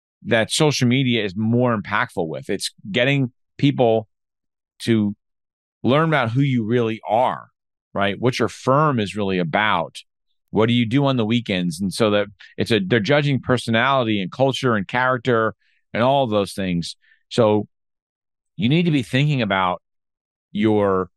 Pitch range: 95-125 Hz